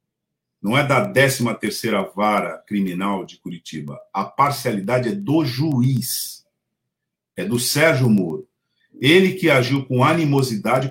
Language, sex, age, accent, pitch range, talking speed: Portuguese, male, 50-69, Brazilian, 115-160 Hz, 120 wpm